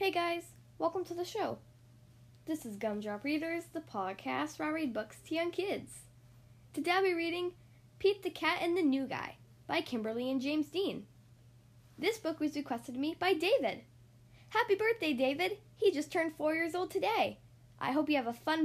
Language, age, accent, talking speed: English, 10-29, American, 190 wpm